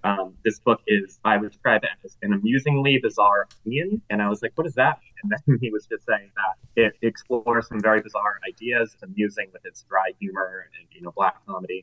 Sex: male